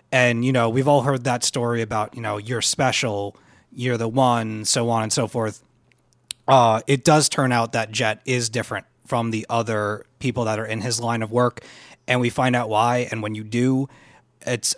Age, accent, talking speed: 30-49, American, 205 wpm